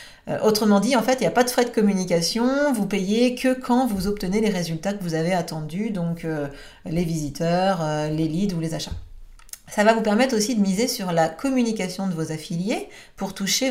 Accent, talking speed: French, 215 wpm